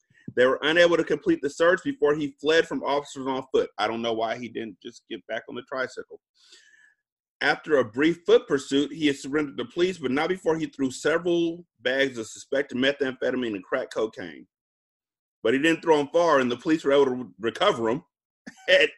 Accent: American